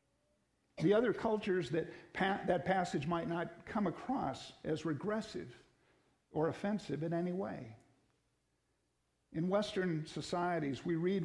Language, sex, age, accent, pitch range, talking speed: English, male, 50-69, American, 155-200 Hz, 115 wpm